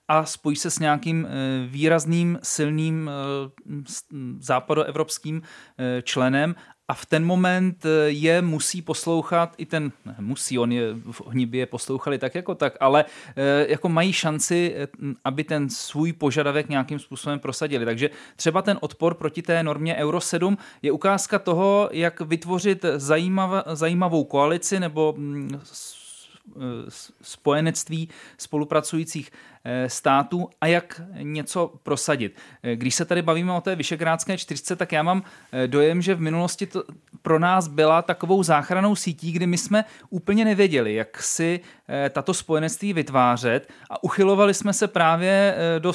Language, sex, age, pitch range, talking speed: Czech, male, 30-49, 150-180 Hz, 135 wpm